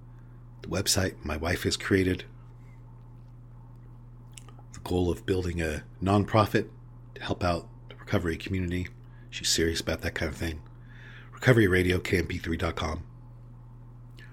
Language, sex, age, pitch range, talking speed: English, male, 40-59, 90-120 Hz, 115 wpm